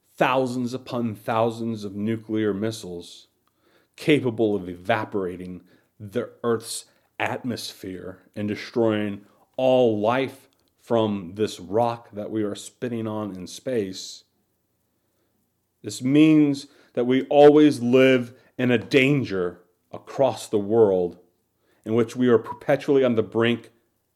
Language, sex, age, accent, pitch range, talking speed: English, male, 40-59, American, 105-130 Hz, 115 wpm